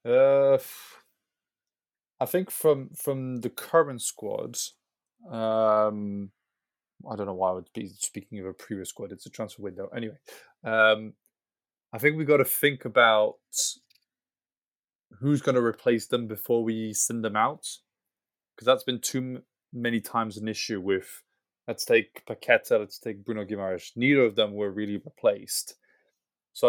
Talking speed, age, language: 155 wpm, 20-39, English